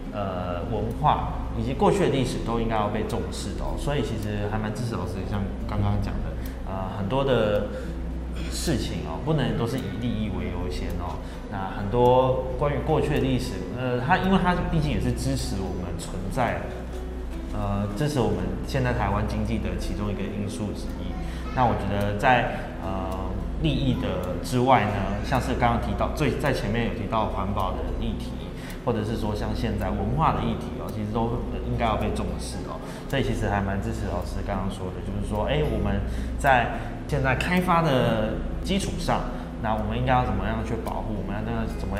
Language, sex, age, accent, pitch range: Chinese, male, 20-39, native, 95-120 Hz